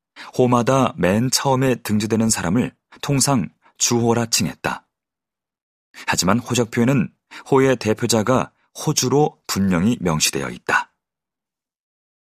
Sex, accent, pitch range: male, native, 110-140 Hz